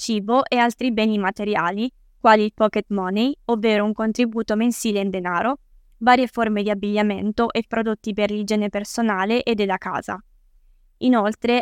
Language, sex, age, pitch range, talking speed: Italian, female, 20-39, 205-235 Hz, 145 wpm